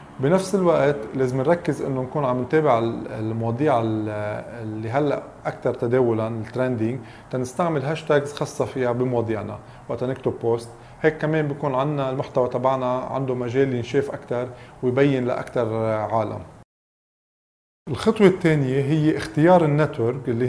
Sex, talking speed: male, 115 wpm